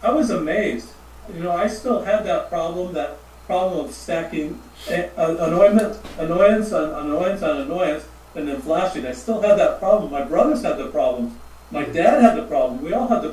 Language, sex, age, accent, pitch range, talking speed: English, male, 40-59, American, 155-225 Hz, 185 wpm